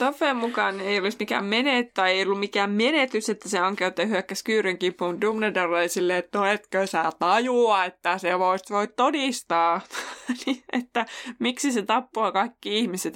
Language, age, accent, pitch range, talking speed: Finnish, 20-39, native, 190-265 Hz, 155 wpm